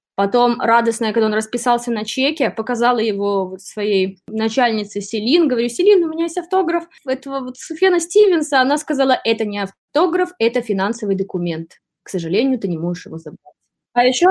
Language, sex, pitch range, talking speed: Russian, female, 210-280 Hz, 165 wpm